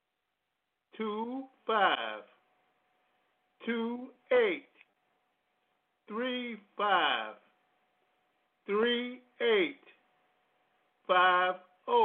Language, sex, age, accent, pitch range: English, male, 50-69, American, 205-265 Hz